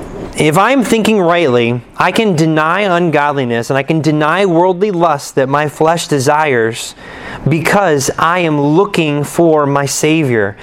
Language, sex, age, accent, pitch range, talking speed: English, male, 30-49, American, 140-180 Hz, 140 wpm